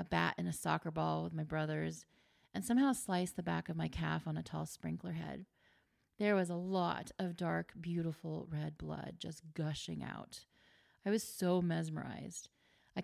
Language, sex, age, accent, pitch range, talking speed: English, female, 30-49, American, 155-220 Hz, 180 wpm